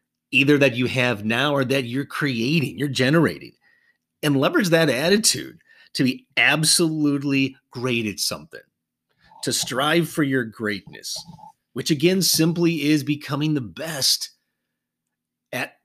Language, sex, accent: English, male, American